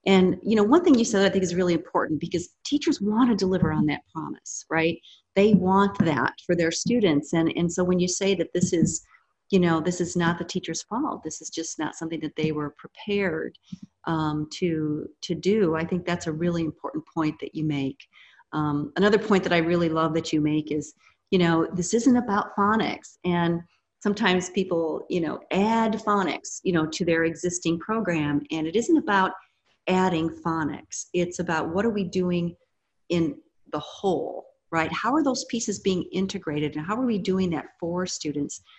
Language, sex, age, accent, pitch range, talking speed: English, female, 40-59, American, 160-195 Hz, 195 wpm